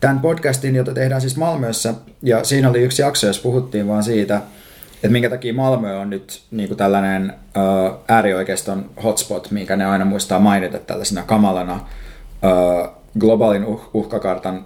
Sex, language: male, Finnish